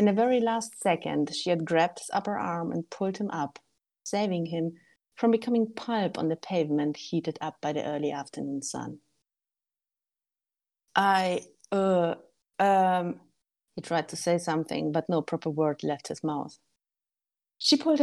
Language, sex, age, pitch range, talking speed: English, female, 30-49, 155-190 Hz, 155 wpm